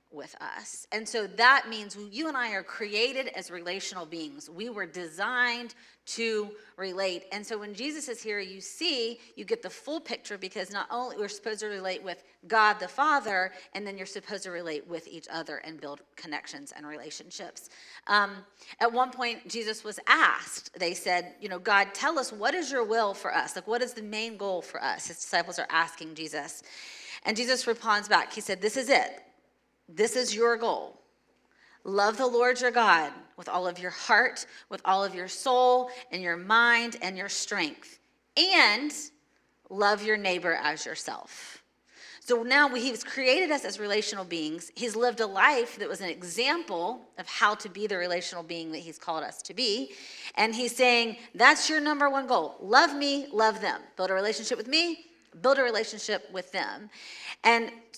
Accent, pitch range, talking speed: American, 185-245 Hz, 190 wpm